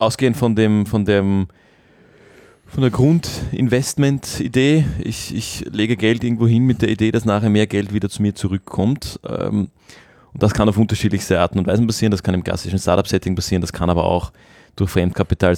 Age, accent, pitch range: 30-49, Austrian, 90-105 Hz